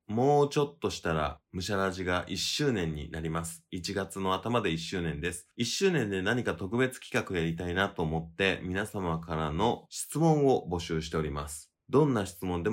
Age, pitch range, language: 20-39, 80-115 Hz, Japanese